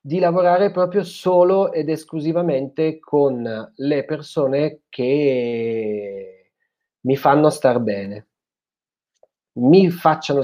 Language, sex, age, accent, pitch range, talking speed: Italian, male, 30-49, native, 115-155 Hz, 90 wpm